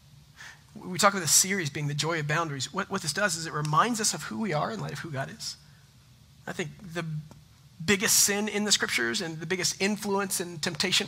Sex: male